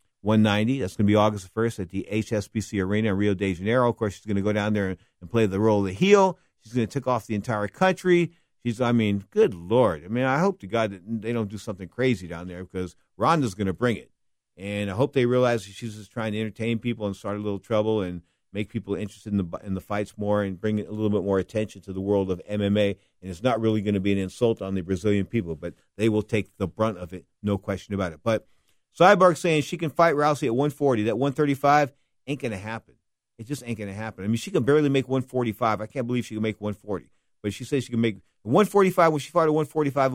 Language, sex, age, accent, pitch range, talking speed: English, male, 50-69, American, 100-125 Hz, 255 wpm